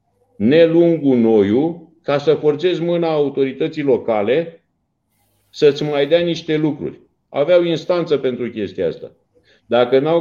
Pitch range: 145-205 Hz